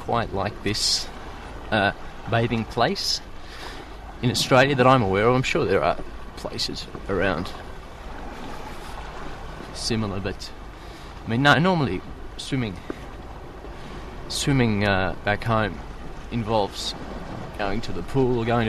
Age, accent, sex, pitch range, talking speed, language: 20-39, Australian, male, 90-125 Hz, 115 wpm, English